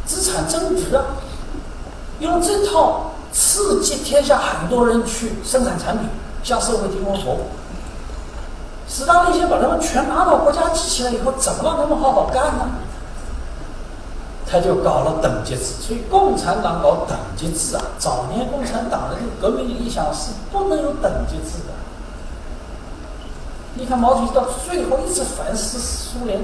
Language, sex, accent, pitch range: Chinese, male, native, 180-280 Hz